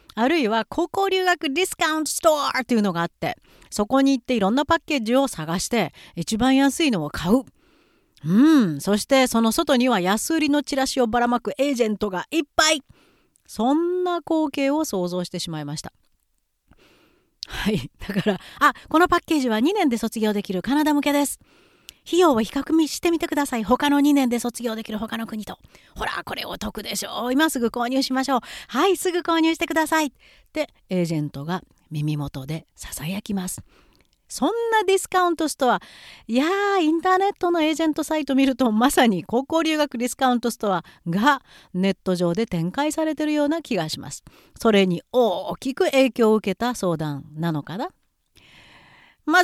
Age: 40-59